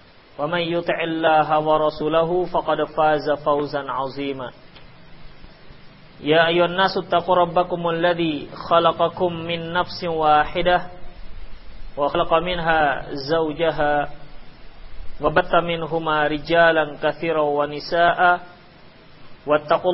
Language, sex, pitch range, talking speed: Indonesian, male, 155-175 Hz, 70 wpm